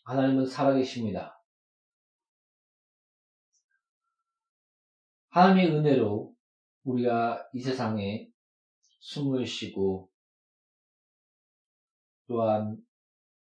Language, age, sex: Korean, 40-59, male